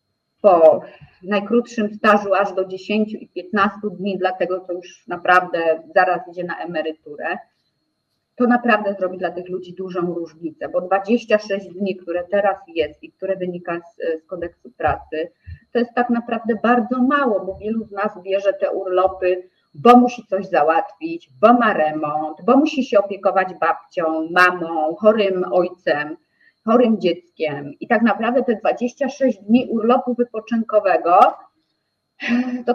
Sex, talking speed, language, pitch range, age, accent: female, 140 wpm, Polish, 175-240 Hz, 30-49, native